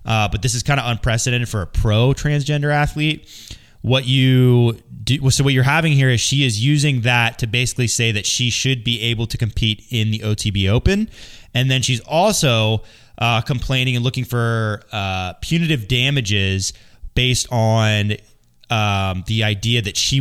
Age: 20-39